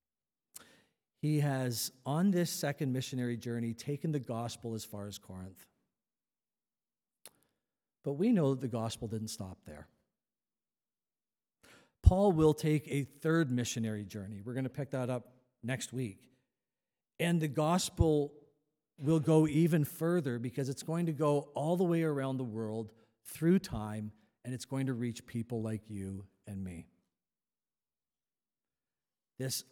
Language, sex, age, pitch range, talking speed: English, male, 50-69, 105-140 Hz, 140 wpm